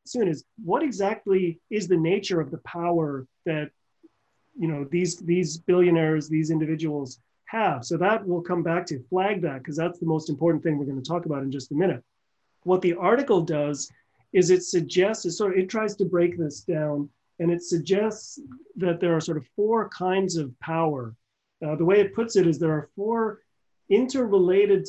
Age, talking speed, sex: 30-49, 195 wpm, male